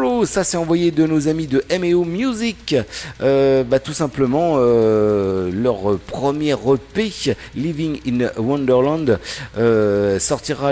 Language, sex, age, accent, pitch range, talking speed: French, male, 50-69, French, 120-155 Hz, 125 wpm